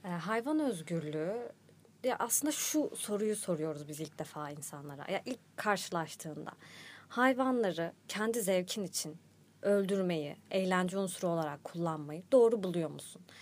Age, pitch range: 30-49, 175-240 Hz